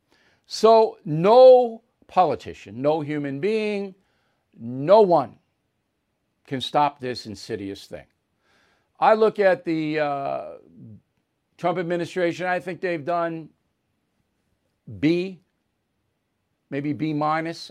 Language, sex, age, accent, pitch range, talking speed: English, male, 50-69, American, 145-195 Hz, 95 wpm